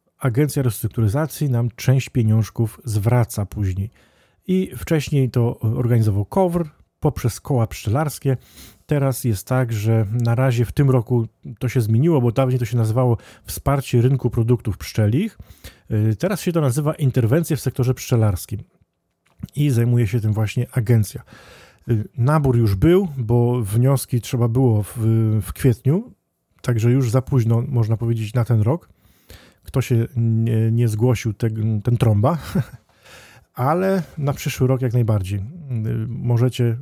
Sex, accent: male, native